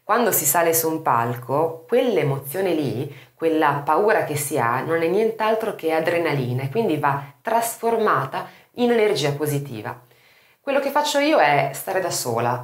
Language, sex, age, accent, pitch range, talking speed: Italian, female, 30-49, native, 140-215 Hz, 155 wpm